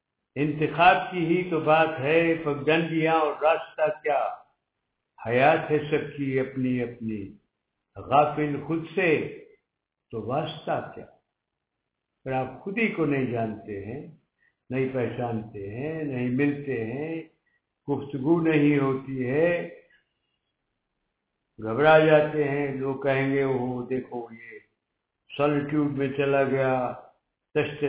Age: 60-79